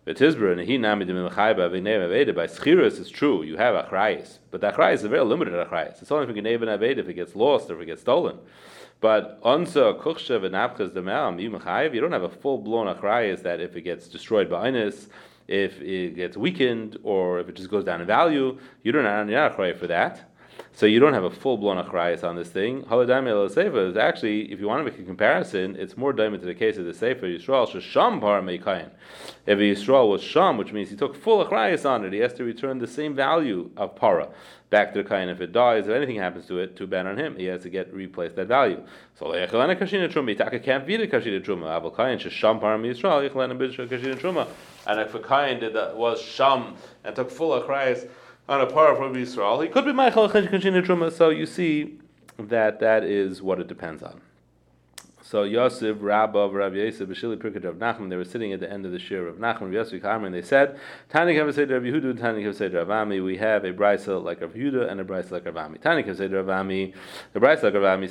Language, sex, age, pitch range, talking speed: English, male, 30-49, 95-135 Hz, 215 wpm